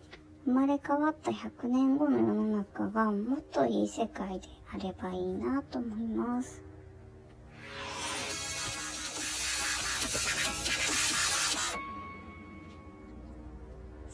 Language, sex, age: Japanese, male, 20-39